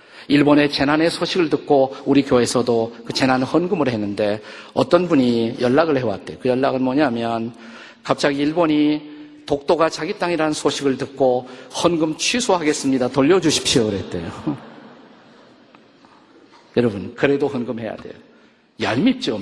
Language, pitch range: Korean, 130-175 Hz